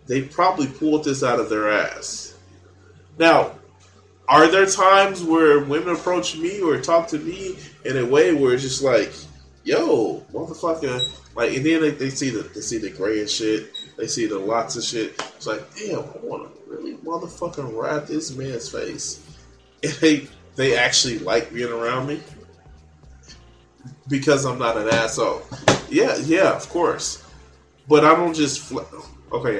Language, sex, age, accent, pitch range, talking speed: English, male, 20-39, American, 95-150 Hz, 160 wpm